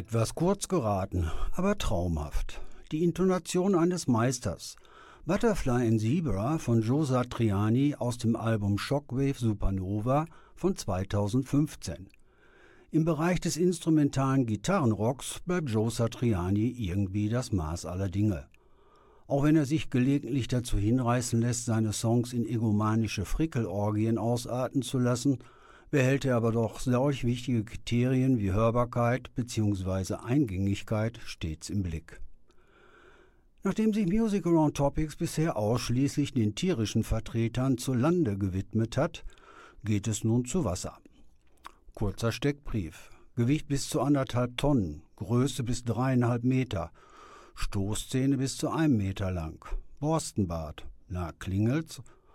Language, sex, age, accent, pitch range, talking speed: German, male, 60-79, German, 105-140 Hz, 120 wpm